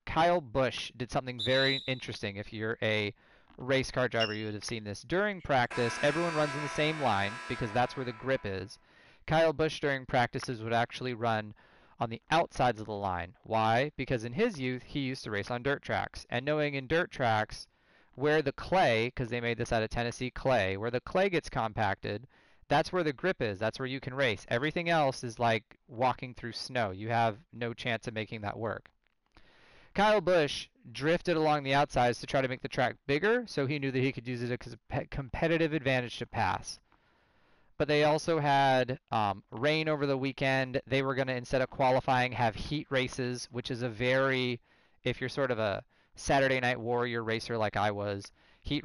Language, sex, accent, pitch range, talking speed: English, male, American, 115-140 Hz, 205 wpm